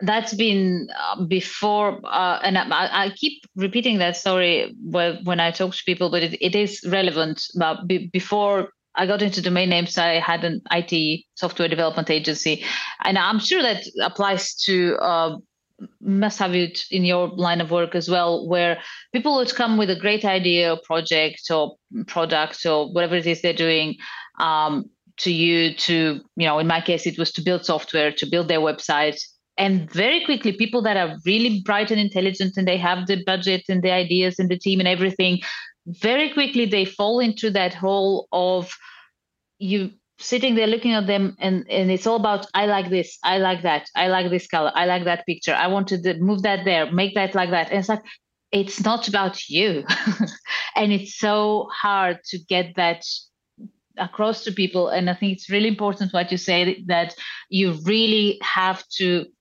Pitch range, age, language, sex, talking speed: 175-205 Hz, 30-49, English, female, 190 wpm